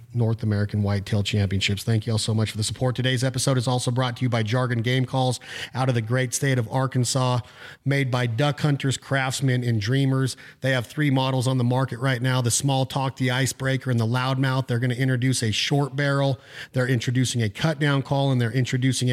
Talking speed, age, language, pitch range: 215 wpm, 40-59, English, 120-135 Hz